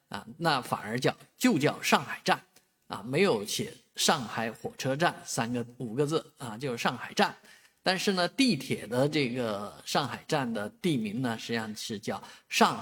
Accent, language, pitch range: native, Chinese, 120-180 Hz